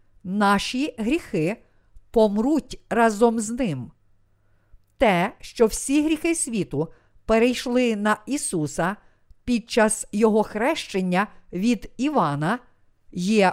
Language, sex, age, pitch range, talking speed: Ukrainian, female, 50-69, 170-245 Hz, 95 wpm